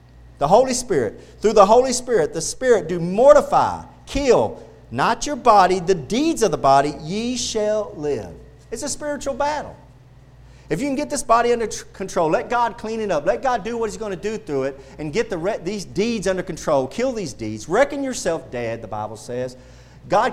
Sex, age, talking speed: male, 40-59, 195 wpm